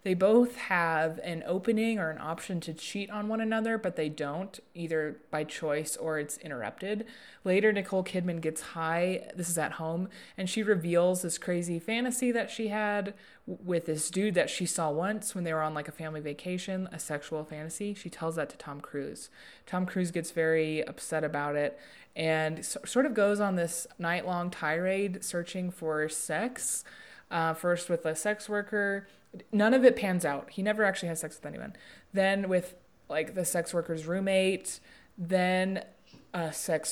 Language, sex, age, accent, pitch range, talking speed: English, female, 20-39, American, 160-205 Hz, 180 wpm